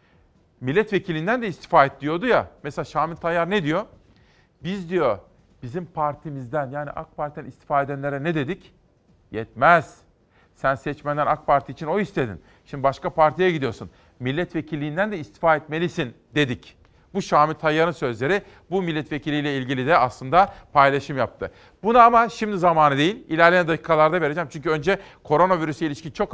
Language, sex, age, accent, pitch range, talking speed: Turkish, male, 40-59, native, 140-180 Hz, 145 wpm